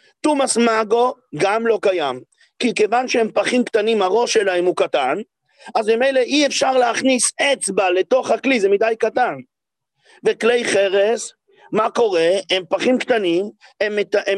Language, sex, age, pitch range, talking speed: English, male, 40-59, 200-270 Hz, 150 wpm